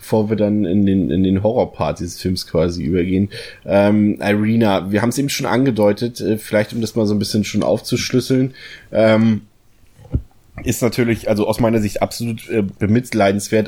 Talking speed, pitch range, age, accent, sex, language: 165 wpm, 100-115 Hz, 20-39, German, male, German